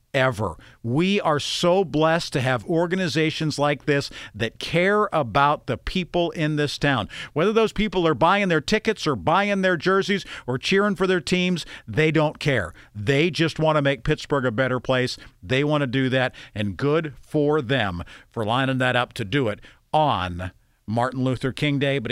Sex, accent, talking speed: male, American, 185 wpm